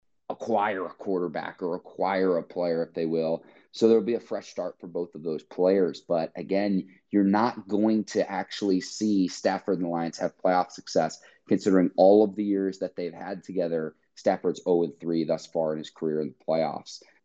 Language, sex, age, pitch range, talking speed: English, male, 30-49, 90-105 Hz, 190 wpm